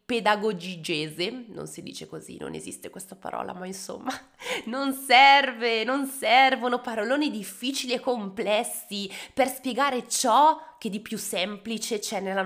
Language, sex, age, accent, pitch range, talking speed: Italian, female, 20-39, native, 185-250 Hz, 135 wpm